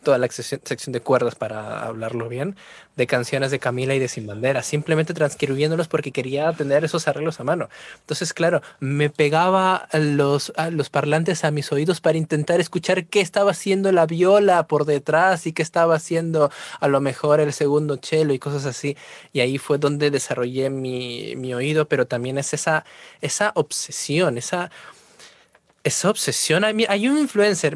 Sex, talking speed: male, 170 wpm